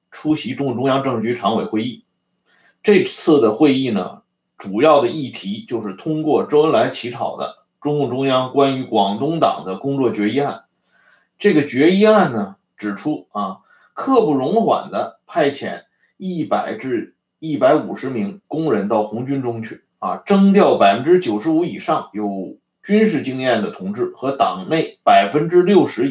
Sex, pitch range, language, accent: male, 125-185 Hz, Chinese, native